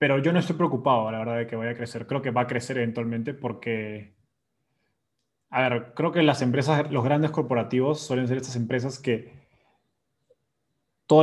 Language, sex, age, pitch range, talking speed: Spanish, male, 20-39, 120-145 Hz, 180 wpm